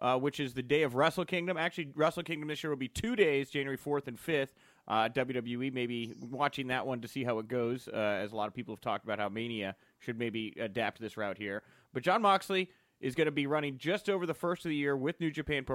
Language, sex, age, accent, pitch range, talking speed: English, male, 30-49, American, 115-145 Hz, 260 wpm